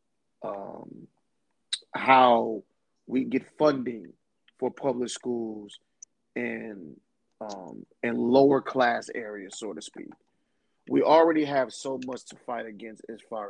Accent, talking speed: American, 120 wpm